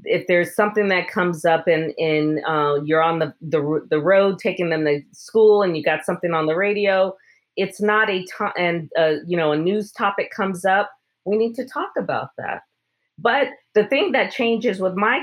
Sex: female